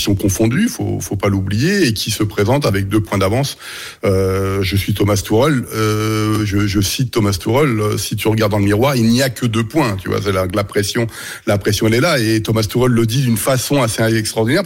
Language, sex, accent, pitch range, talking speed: French, male, French, 105-135 Hz, 235 wpm